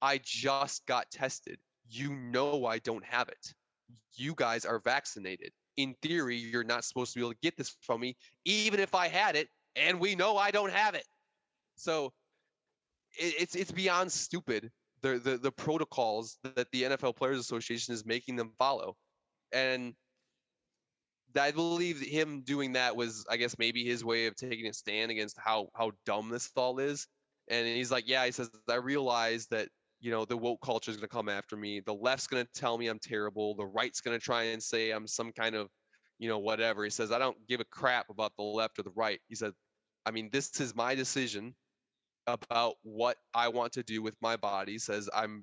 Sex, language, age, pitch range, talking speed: male, English, 20-39, 110-130 Hz, 205 wpm